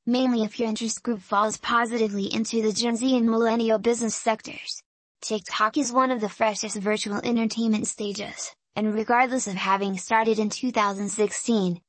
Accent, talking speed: American, 155 wpm